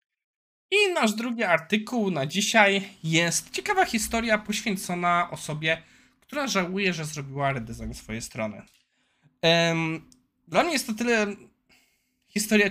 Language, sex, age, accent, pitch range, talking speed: Polish, male, 20-39, native, 145-205 Hz, 120 wpm